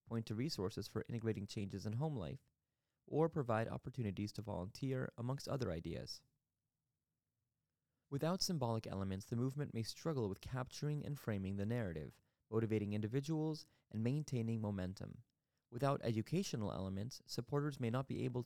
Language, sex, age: English, male, 20-39